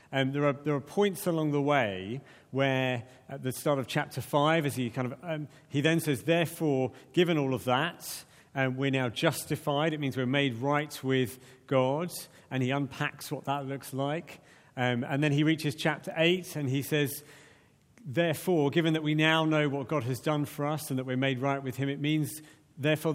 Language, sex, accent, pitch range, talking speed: English, male, British, 130-160 Hz, 205 wpm